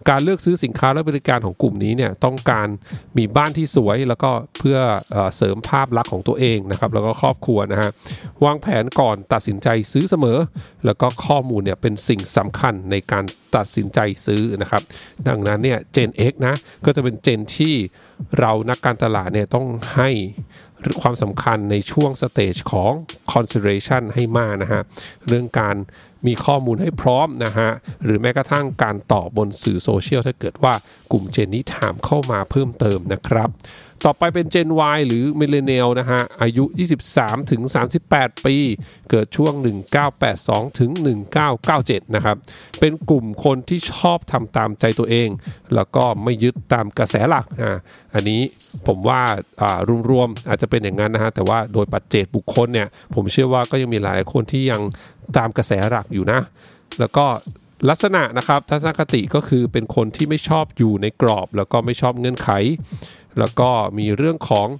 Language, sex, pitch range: English, male, 105-140 Hz